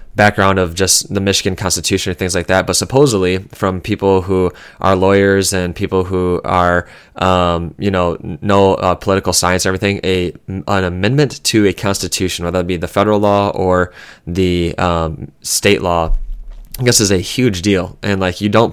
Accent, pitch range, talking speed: American, 90-100 Hz, 180 wpm